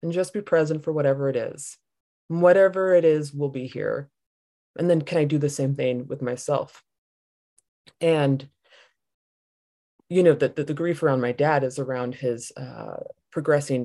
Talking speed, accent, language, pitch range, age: 170 wpm, American, English, 130-165 Hz, 20-39